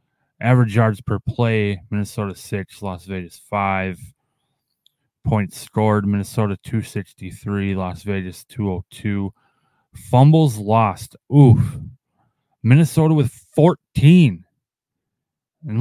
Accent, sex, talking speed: American, male, 85 wpm